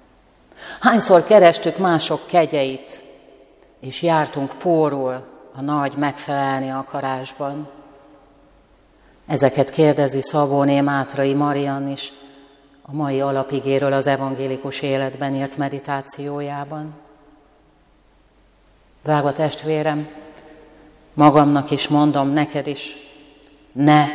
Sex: female